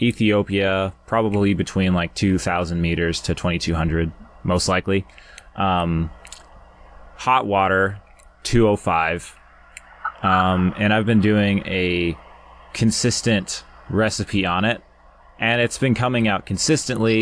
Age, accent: 20-39, American